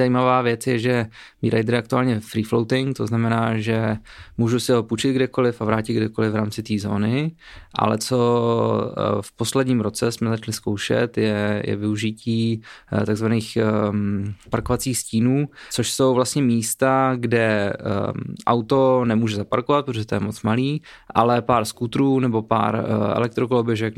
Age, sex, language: 20-39, male, Czech